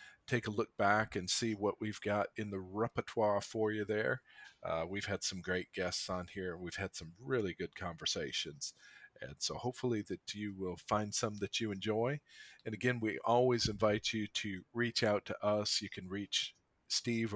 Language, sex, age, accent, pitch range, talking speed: English, male, 40-59, American, 95-115 Hz, 190 wpm